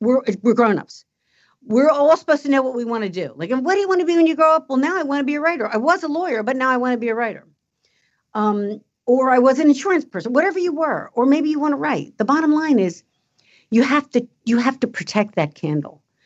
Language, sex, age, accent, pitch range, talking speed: English, female, 50-69, American, 190-265 Hz, 270 wpm